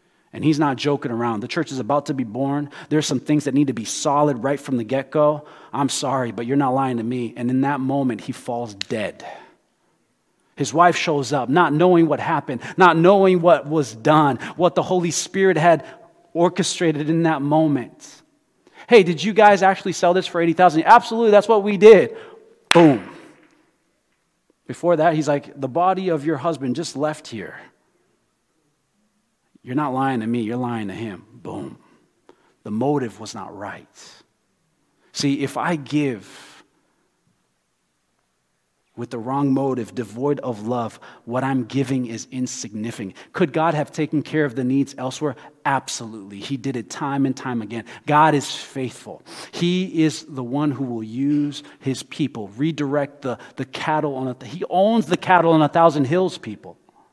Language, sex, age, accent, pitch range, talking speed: English, male, 30-49, American, 135-185 Hz, 170 wpm